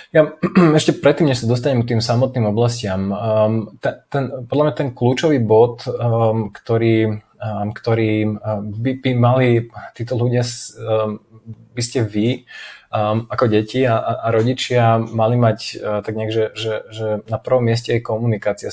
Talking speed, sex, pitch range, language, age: 140 wpm, male, 105-120 Hz, Slovak, 20-39